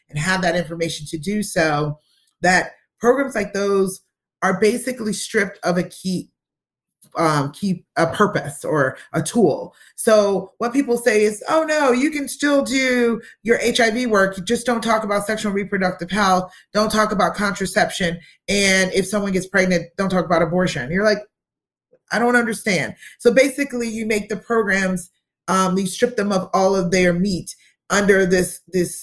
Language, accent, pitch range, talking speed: English, American, 170-220 Hz, 170 wpm